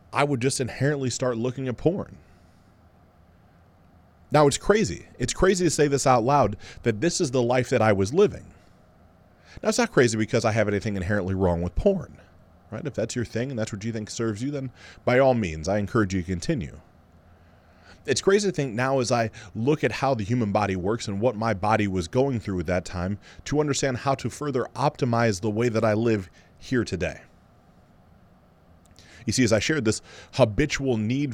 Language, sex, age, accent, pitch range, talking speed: English, male, 30-49, American, 90-135 Hz, 200 wpm